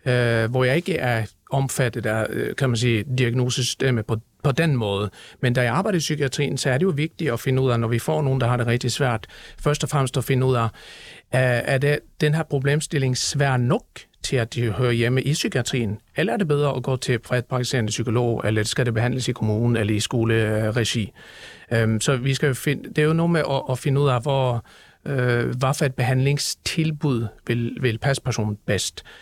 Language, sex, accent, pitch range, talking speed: Danish, male, native, 115-140 Hz, 210 wpm